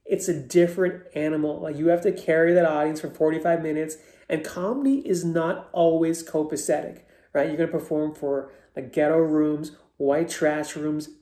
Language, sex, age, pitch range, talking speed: English, male, 30-49, 145-170 Hz, 165 wpm